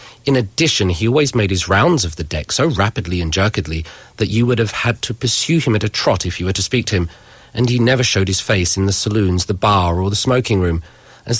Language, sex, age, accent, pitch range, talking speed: English, male, 40-59, British, 95-120 Hz, 255 wpm